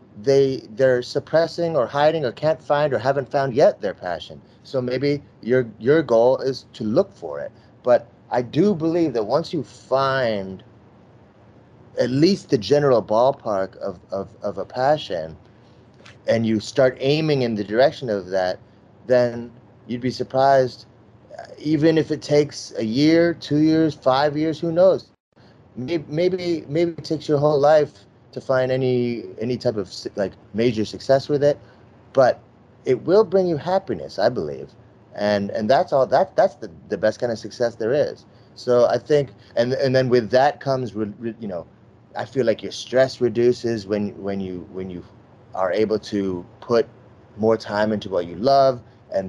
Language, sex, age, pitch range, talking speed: English, male, 30-49, 110-145 Hz, 175 wpm